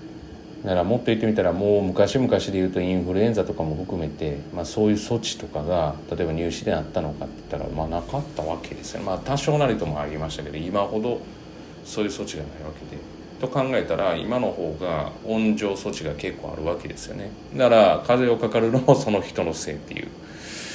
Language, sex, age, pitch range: Japanese, male, 30-49, 80-110 Hz